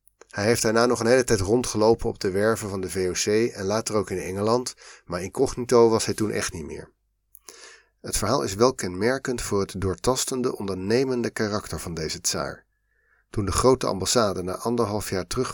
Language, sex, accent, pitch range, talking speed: Dutch, male, Dutch, 95-115 Hz, 185 wpm